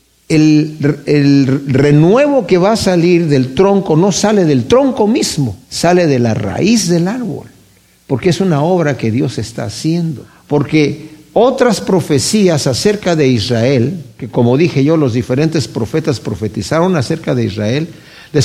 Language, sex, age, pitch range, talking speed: Spanish, male, 50-69, 130-180 Hz, 150 wpm